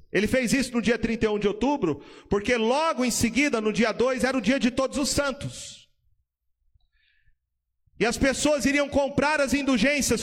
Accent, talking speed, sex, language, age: Brazilian, 170 wpm, male, Portuguese, 40-59